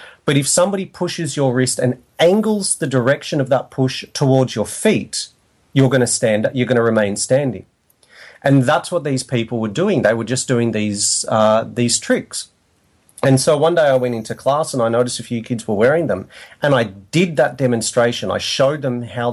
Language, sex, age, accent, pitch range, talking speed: English, male, 30-49, Australian, 105-135 Hz, 205 wpm